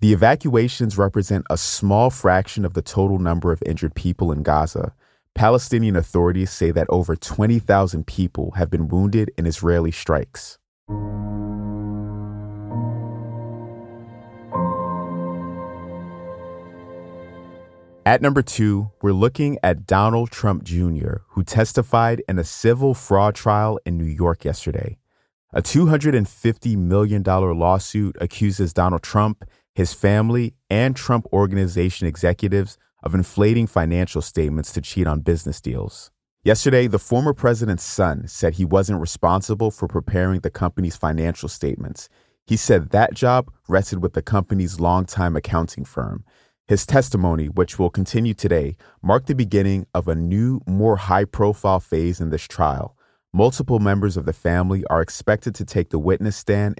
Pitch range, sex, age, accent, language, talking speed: 85-110 Hz, male, 30-49, American, English, 135 wpm